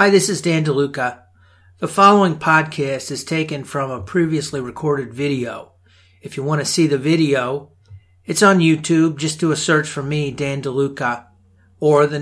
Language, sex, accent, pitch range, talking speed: English, male, American, 130-170 Hz, 170 wpm